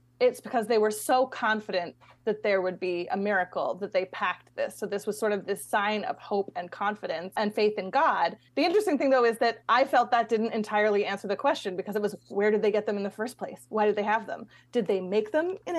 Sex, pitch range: female, 200-250 Hz